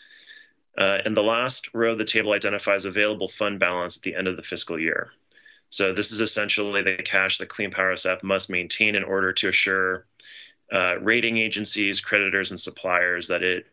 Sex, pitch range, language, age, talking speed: male, 95-115 Hz, English, 30-49, 185 wpm